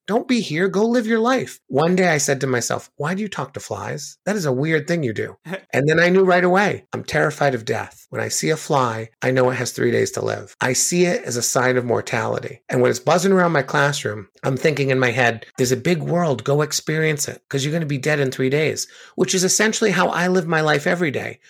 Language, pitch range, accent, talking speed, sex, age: English, 125-175 Hz, American, 265 wpm, male, 30-49